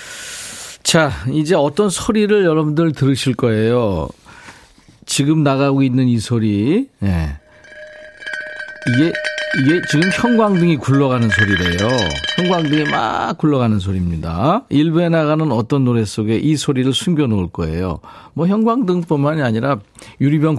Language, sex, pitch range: Korean, male, 110-165 Hz